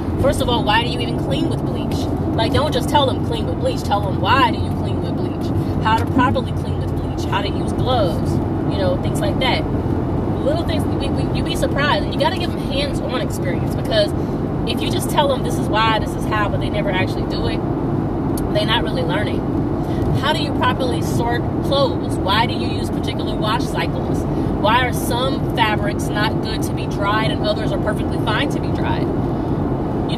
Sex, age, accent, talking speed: female, 30-49, American, 210 wpm